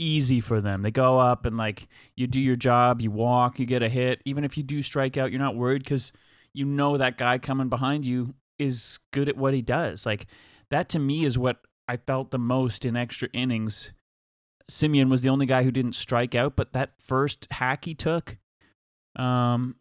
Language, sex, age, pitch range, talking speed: English, male, 30-49, 125-150 Hz, 210 wpm